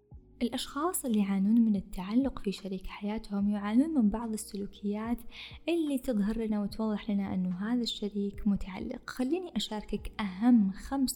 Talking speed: 135 wpm